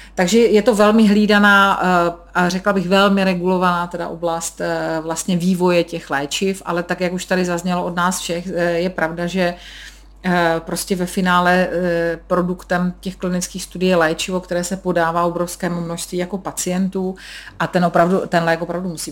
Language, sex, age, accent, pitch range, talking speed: Czech, female, 40-59, native, 170-185 Hz, 155 wpm